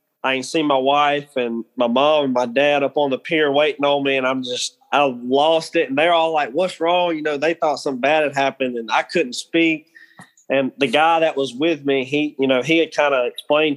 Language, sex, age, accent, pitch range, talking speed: English, male, 20-39, American, 130-160 Hz, 250 wpm